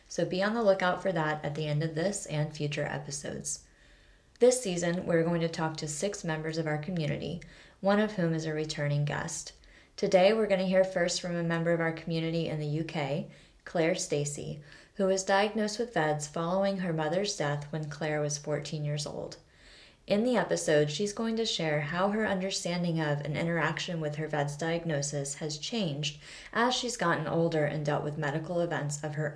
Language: English